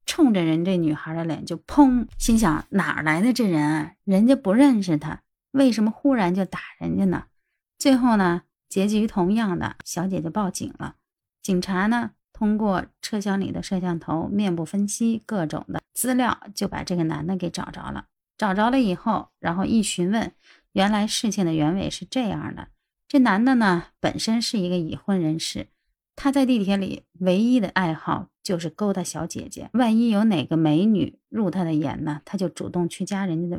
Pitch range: 175-225 Hz